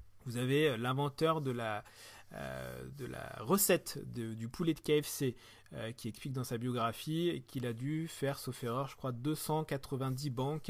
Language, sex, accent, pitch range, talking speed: French, male, French, 115-150 Hz, 150 wpm